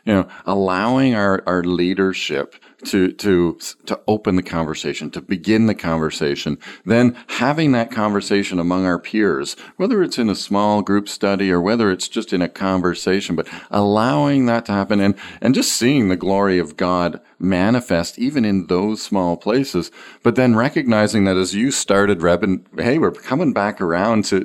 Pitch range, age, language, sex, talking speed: 100-125 Hz, 40-59, English, male, 175 wpm